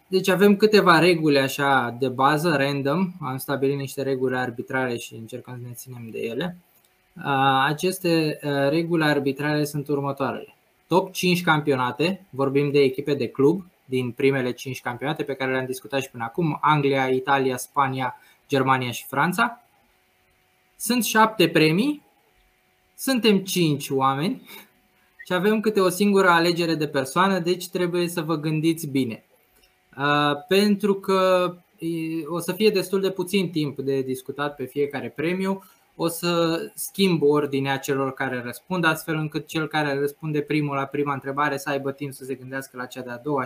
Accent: native